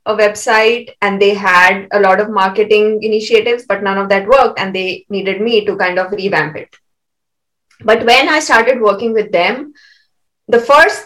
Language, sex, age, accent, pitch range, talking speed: English, female, 20-39, Indian, 195-235 Hz, 180 wpm